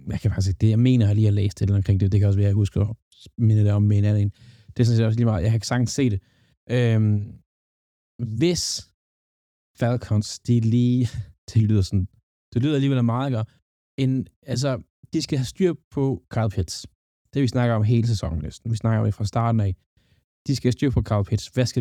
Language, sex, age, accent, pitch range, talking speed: Danish, male, 20-39, native, 95-125 Hz, 230 wpm